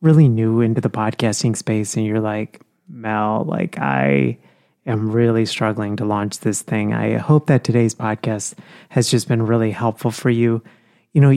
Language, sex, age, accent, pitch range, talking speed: English, male, 30-49, American, 110-125 Hz, 175 wpm